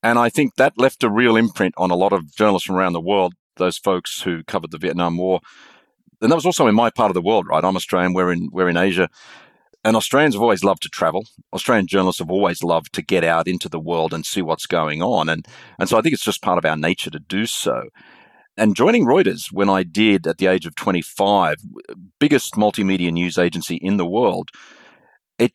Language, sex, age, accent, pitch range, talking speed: English, male, 40-59, Australian, 90-105 Hz, 230 wpm